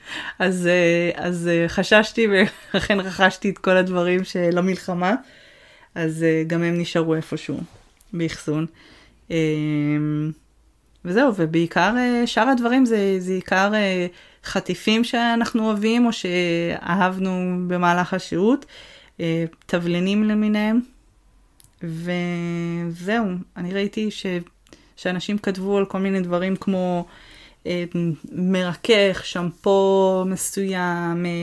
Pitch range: 170-200 Hz